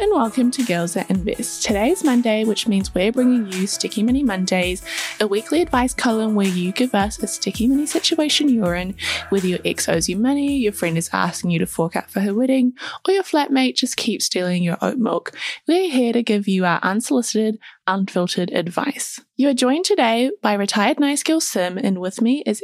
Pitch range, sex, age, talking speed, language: 195-260 Hz, female, 10-29, 205 wpm, English